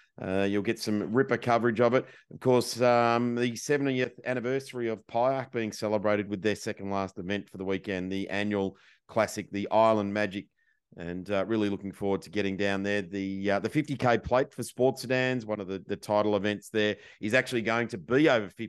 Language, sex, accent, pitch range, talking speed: English, male, Australian, 100-115 Hz, 200 wpm